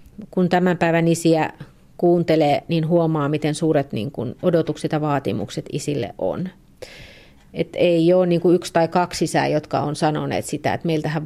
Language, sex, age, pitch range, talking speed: Finnish, female, 30-49, 150-185 Hz, 140 wpm